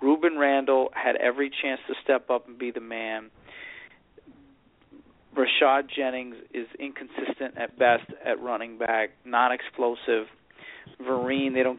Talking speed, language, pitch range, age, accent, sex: 125 wpm, English, 130-170 Hz, 40-59, American, male